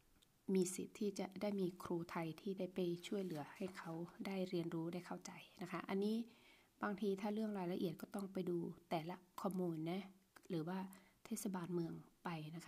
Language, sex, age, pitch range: Thai, female, 20-39, 175-205 Hz